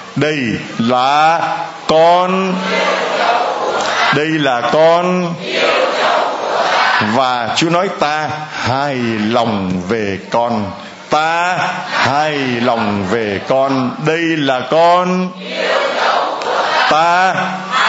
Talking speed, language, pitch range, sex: 80 wpm, Vietnamese, 125-170 Hz, male